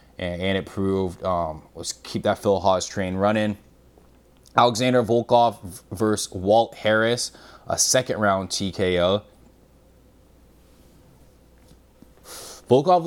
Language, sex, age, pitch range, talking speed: English, male, 20-39, 90-125 Hz, 95 wpm